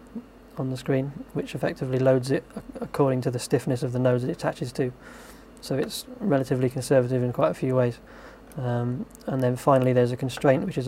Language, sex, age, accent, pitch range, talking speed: English, male, 20-39, British, 125-155 Hz, 195 wpm